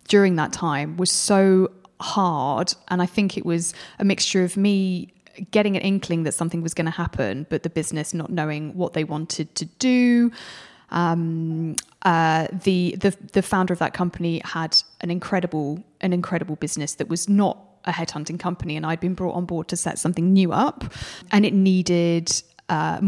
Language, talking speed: English, 180 wpm